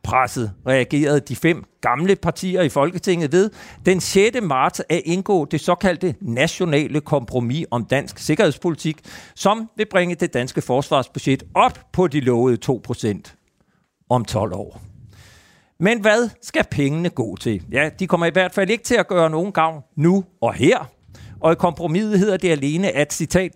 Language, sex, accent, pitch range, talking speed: Danish, male, native, 115-170 Hz, 165 wpm